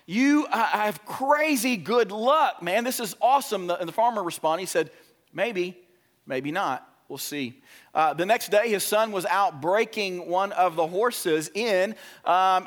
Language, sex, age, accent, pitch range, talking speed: English, male, 40-59, American, 170-225 Hz, 170 wpm